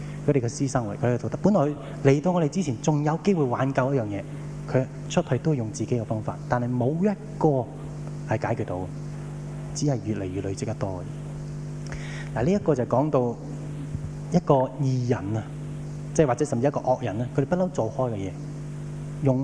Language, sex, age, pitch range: Japanese, male, 20-39, 125-150 Hz